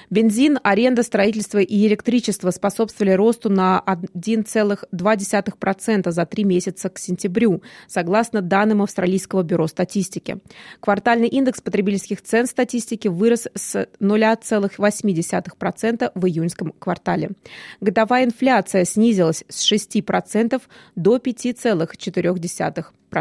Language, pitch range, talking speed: Russian, 185-225 Hz, 95 wpm